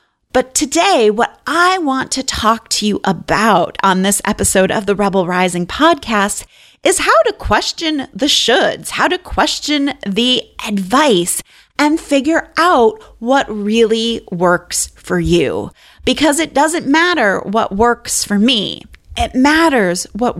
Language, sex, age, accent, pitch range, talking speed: English, female, 30-49, American, 190-270 Hz, 140 wpm